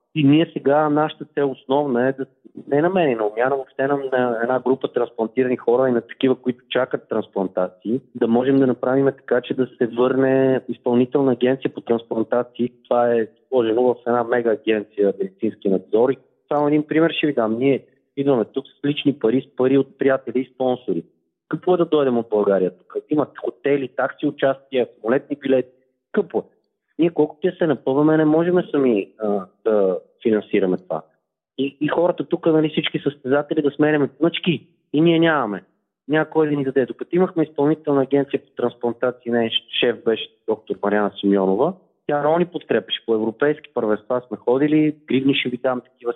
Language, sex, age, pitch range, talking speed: Bulgarian, male, 30-49, 120-150 Hz, 170 wpm